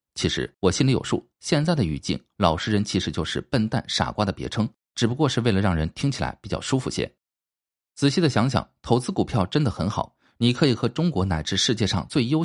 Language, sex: Chinese, male